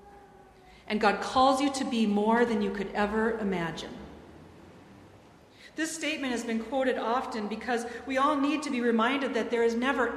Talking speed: 170 wpm